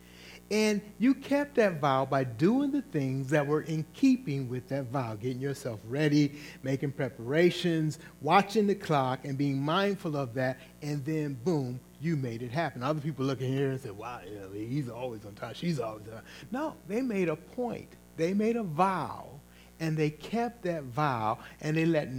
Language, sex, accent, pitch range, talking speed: English, male, American, 130-175 Hz, 185 wpm